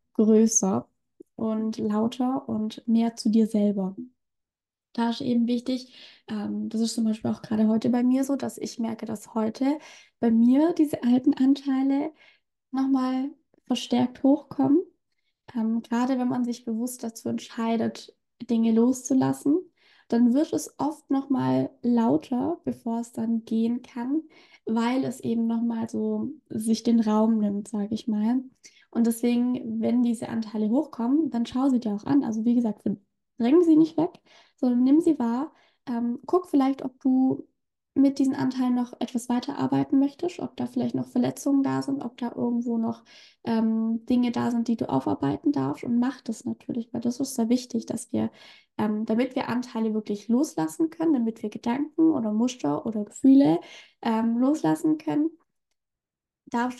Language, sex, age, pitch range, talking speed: German, female, 10-29, 225-275 Hz, 160 wpm